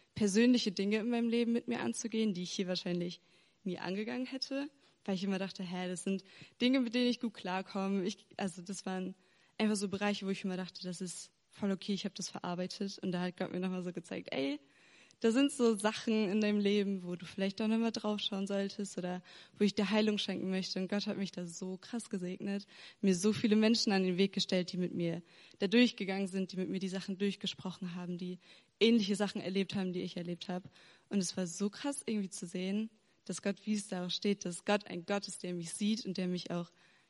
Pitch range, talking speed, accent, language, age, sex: 180-210 Hz, 230 wpm, German, German, 20-39, female